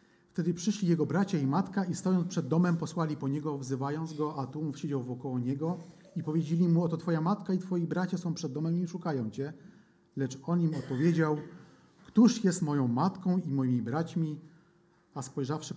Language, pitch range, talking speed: Polish, 130-175 Hz, 185 wpm